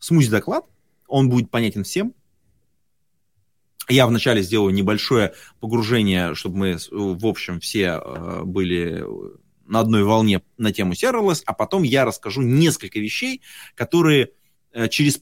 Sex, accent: male, native